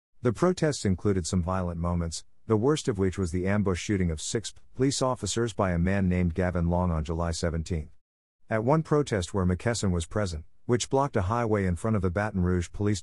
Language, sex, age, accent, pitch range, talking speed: English, male, 50-69, American, 85-115 Hz, 205 wpm